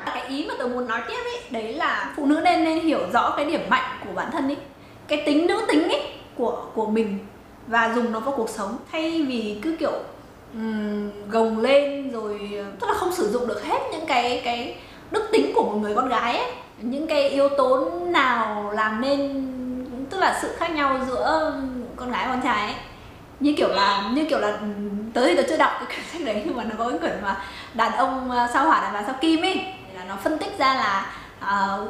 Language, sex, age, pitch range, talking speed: Vietnamese, female, 20-39, 225-310 Hz, 220 wpm